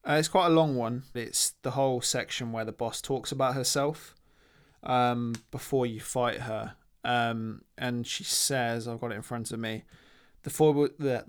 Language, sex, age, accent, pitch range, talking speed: English, male, 20-39, British, 120-130 Hz, 180 wpm